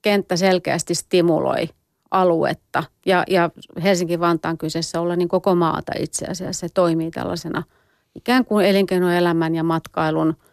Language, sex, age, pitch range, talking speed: Finnish, female, 30-49, 170-205 Hz, 120 wpm